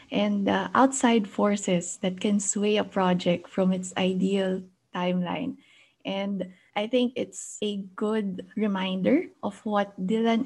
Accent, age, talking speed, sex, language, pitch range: Filipino, 20-39, 130 wpm, female, English, 190-230 Hz